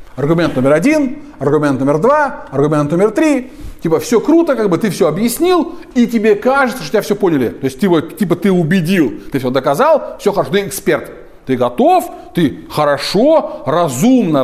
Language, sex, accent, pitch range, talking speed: Russian, male, native, 170-275 Hz, 170 wpm